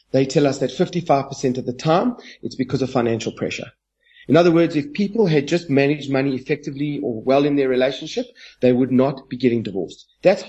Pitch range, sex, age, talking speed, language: 125-155 Hz, male, 30-49, 200 wpm, English